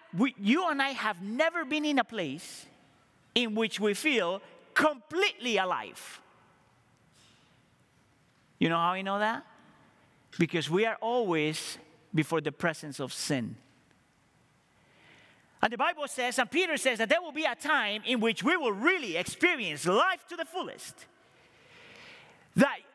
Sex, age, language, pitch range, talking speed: male, 40-59, English, 210-310 Hz, 140 wpm